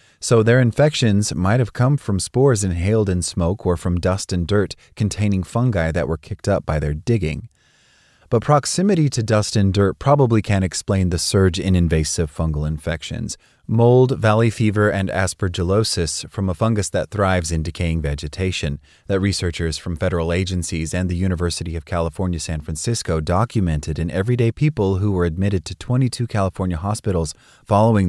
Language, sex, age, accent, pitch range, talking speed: English, male, 30-49, American, 85-110 Hz, 165 wpm